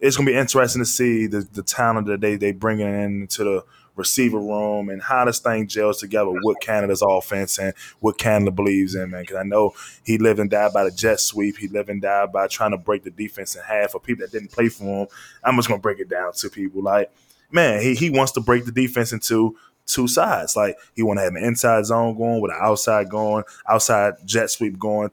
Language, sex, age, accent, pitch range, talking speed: English, male, 20-39, American, 100-115 Hz, 240 wpm